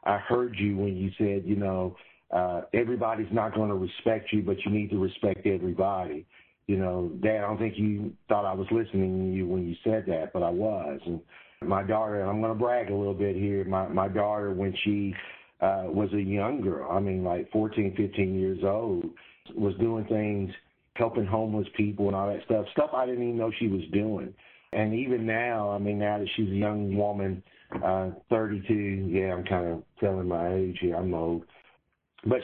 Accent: American